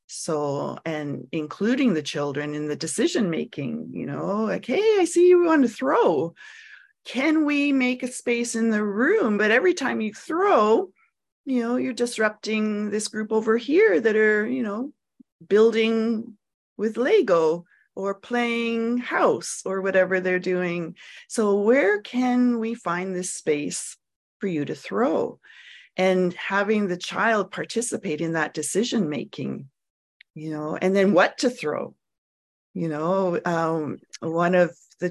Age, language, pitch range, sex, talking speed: 30-49, English, 165-245 Hz, female, 150 wpm